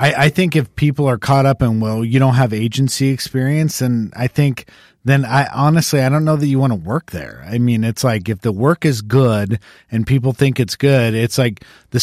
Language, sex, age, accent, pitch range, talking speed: English, male, 40-59, American, 115-140 Hz, 230 wpm